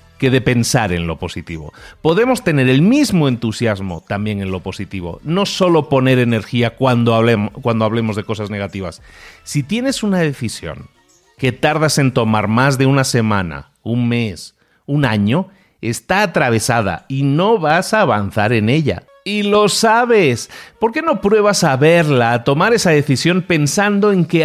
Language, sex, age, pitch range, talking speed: Spanish, male, 40-59, 110-165 Hz, 160 wpm